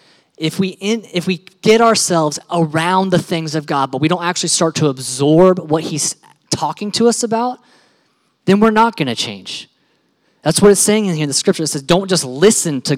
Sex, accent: male, American